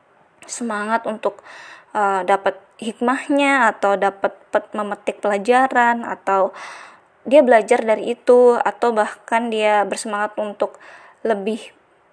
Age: 20-39